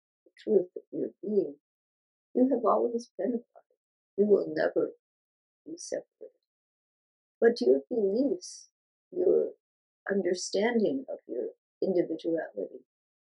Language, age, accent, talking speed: English, 50-69, American, 95 wpm